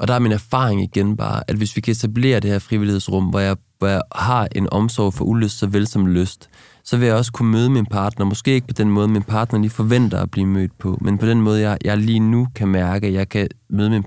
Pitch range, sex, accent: 95-115 Hz, male, native